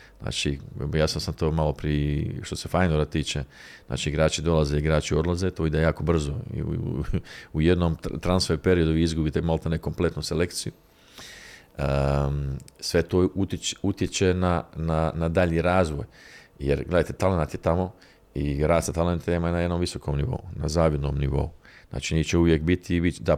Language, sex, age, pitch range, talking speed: Croatian, male, 40-59, 75-85 Hz, 155 wpm